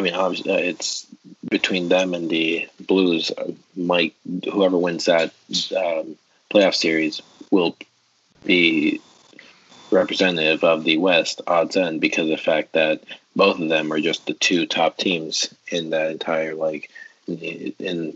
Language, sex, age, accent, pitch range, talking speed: English, male, 30-49, American, 80-85 Hz, 140 wpm